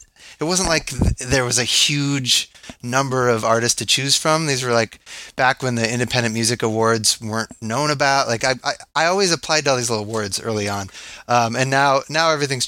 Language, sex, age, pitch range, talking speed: English, male, 30-49, 110-135 Hz, 205 wpm